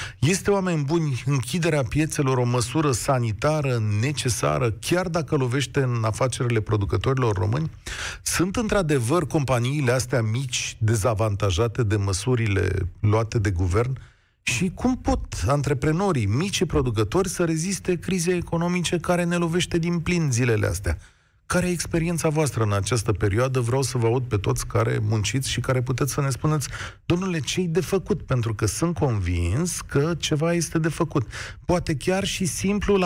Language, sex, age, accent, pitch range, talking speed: Romanian, male, 40-59, native, 110-160 Hz, 150 wpm